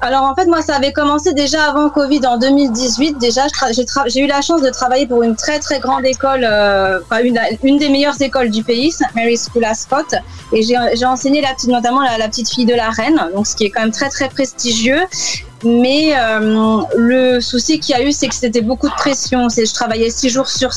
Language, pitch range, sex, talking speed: French, 225-270 Hz, female, 240 wpm